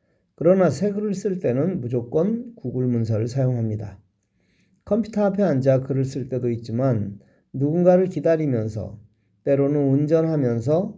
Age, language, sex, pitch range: 40-59, Korean, male, 120-175 Hz